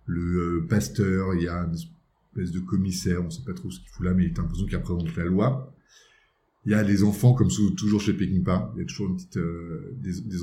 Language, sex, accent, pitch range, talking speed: French, male, French, 90-125 Hz, 255 wpm